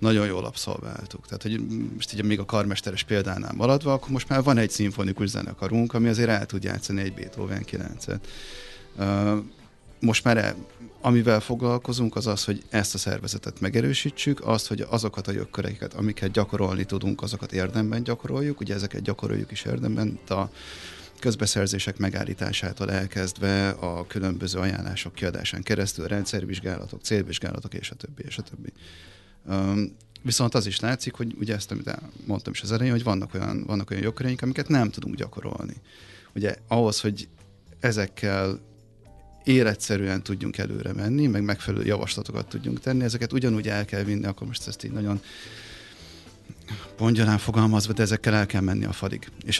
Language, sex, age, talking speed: Hungarian, male, 30-49, 150 wpm